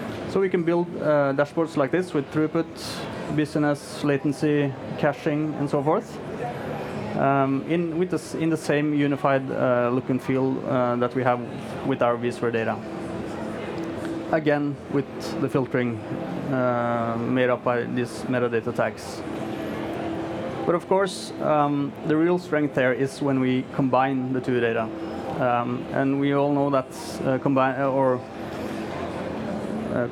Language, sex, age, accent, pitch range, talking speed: English, male, 30-49, Norwegian, 130-155 Hz, 145 wpm